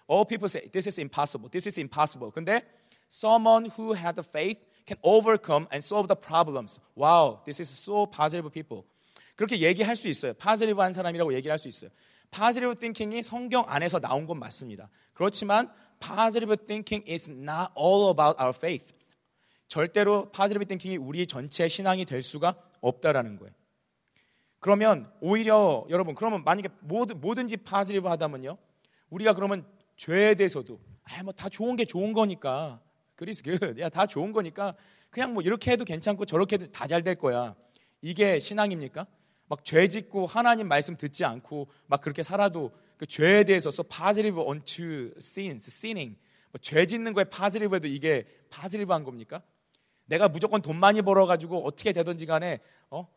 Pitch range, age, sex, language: 155-210 Hz, 30-49, male, Korean